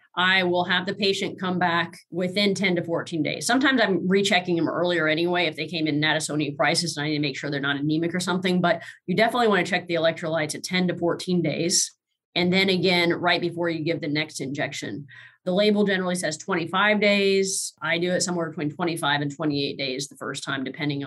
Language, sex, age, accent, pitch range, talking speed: English, female, 20-39, American, 160-195 Hz, 220 wpm